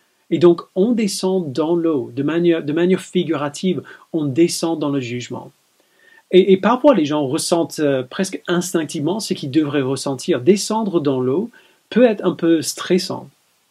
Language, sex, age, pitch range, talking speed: French, male, 30-49, 140-175 Hz, 160 wpm